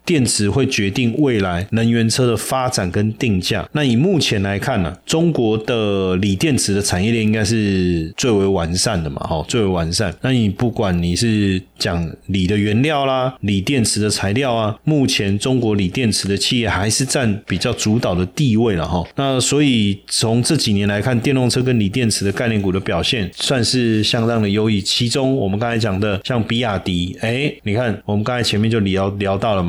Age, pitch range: 30-49, 95-125 Hz